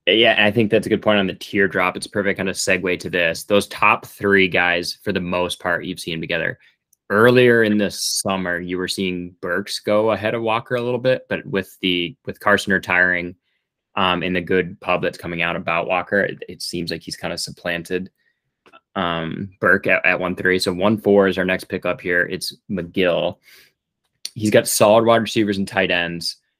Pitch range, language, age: 90-100 Hz, English, 20-39